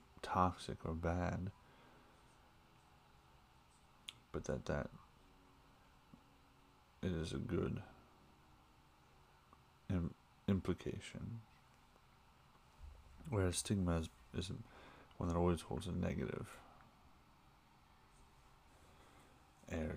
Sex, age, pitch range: male, 30-49, 80-100 Hz